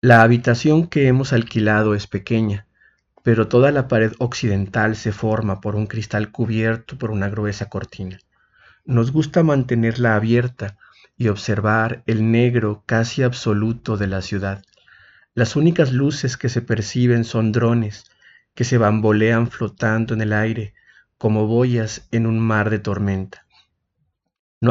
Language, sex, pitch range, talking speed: Spanish, male, 105-120 Hz, 140 wpm